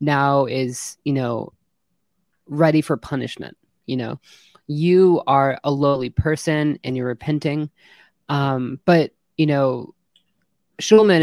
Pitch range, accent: 130-160 Hz, American